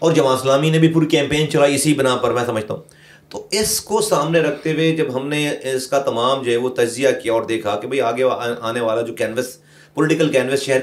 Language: Urdu